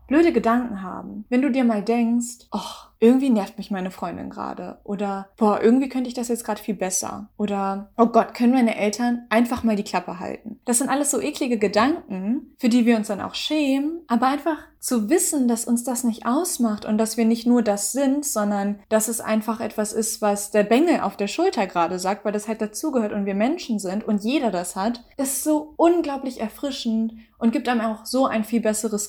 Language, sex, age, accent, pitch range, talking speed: German, female, 20-39, German, 205-245 Hz, 210 wpm